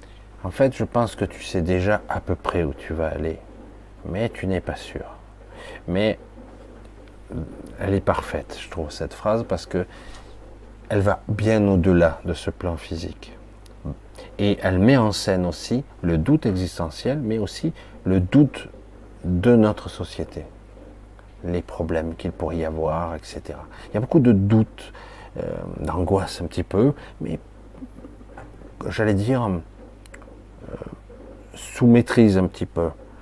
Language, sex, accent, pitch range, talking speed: French, male, French, 90-110 Hz, 145 wpm